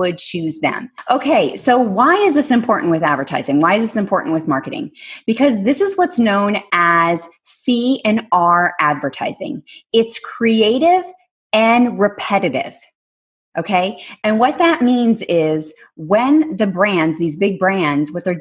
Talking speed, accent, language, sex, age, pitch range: 140 wpm, American, English, female, 20-39, 180-265 Hz